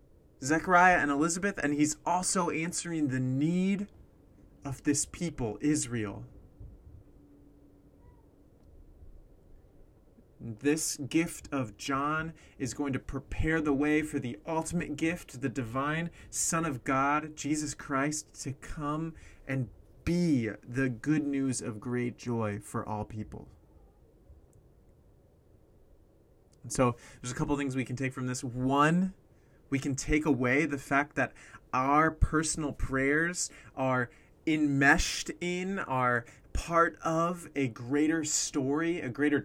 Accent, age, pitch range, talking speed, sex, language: American, 30-49, 125-160 Hz, 120 wpm, male, English